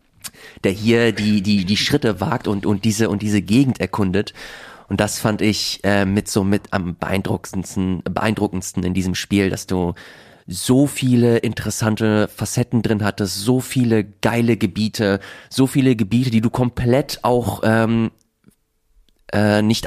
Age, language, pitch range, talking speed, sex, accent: 30-49, German, 105-130 Hz, 150 wpm, male, German